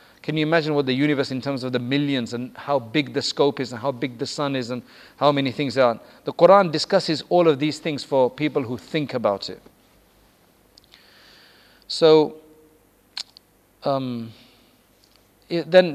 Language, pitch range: English, 130-155 Hz